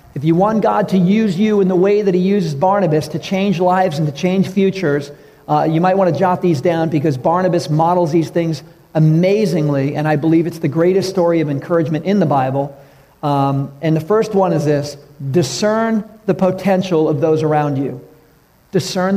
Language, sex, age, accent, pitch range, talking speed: English, male, 50-69, American, 145-175 Hz, 195 wpm